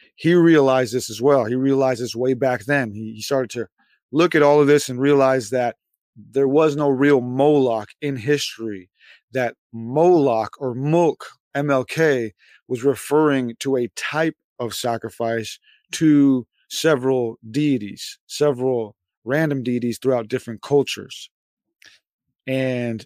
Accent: American